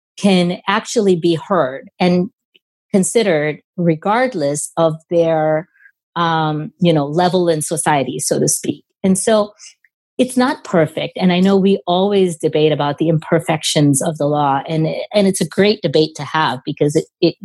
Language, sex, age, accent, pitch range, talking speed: English, female, 40-59, American, 155-205 Hz, 160 wpm